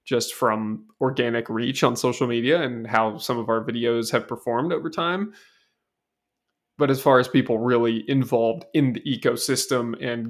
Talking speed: 165 wpm